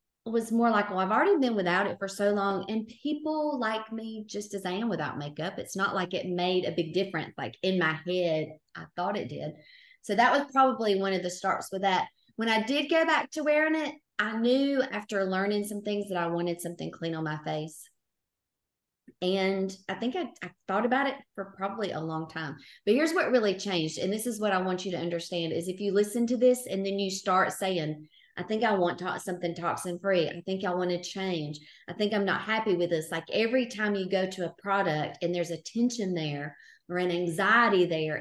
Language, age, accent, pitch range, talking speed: English, 30-49, American, 175-225 Hz, 230 wpm